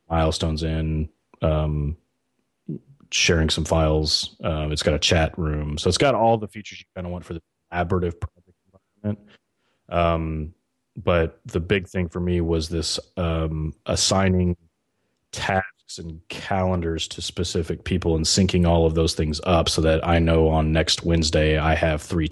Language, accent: English, American